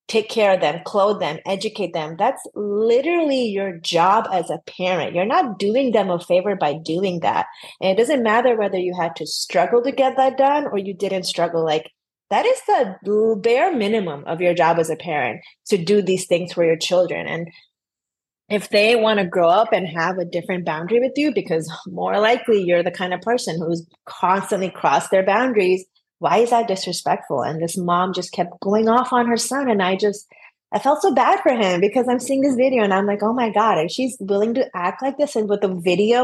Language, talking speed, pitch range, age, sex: English, 220 wpm, 175-230 Hz, 30-49, female